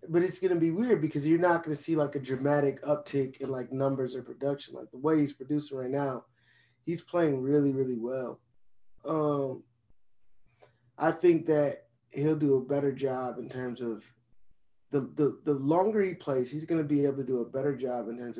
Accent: American